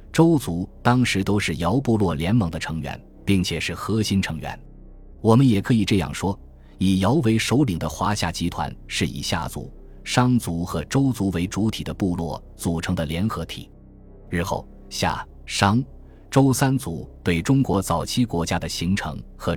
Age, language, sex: 20-39, Chinese, male